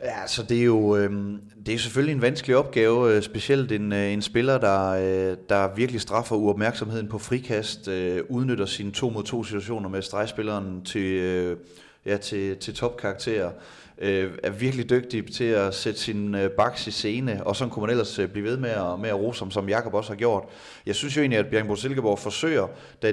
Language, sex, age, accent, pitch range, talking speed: Danish, male, 30-49, native, 100-120 Hz, 195 wpm